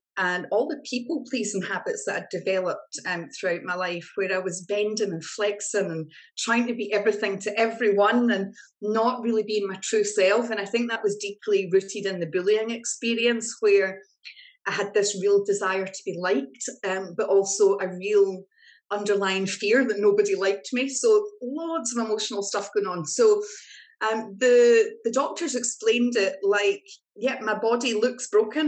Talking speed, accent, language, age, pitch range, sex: 175 wpm, British, English, 30-49, 195-240 Hz, female